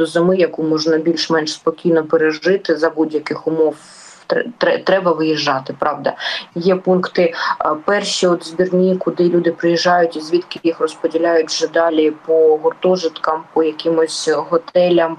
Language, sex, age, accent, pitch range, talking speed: Ukrainian, female, 20-39, native, 160-175 Hz, 125 wpm